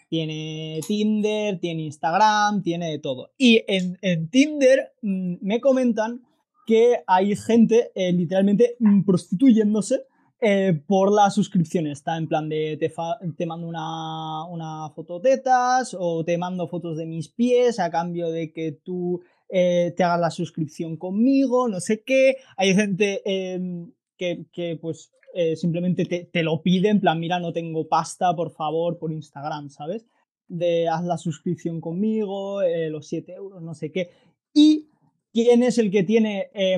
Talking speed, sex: 165 wpm, male